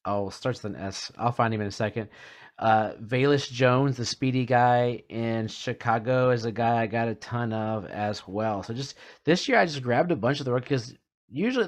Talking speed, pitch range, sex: 220 wpm, 105-130 Hz, male